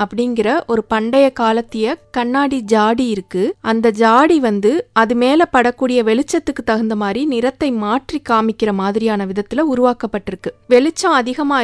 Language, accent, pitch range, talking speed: English, Indian, 210-260 Hz, 125 wpm